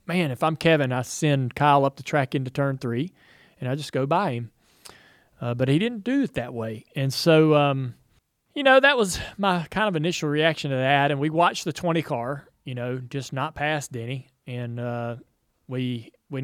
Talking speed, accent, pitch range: 210 wpm, American, 125-165 Hz